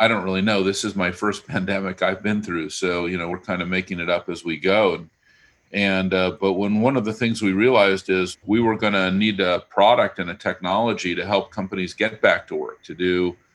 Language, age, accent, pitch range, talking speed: English, 50-69, American, 95-110 Hz, 235 wpm